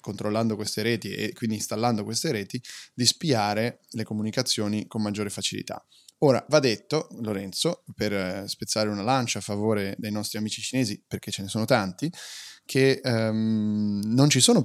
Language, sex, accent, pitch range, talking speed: Italian, male, native, 105-120 Hz, 155 wpm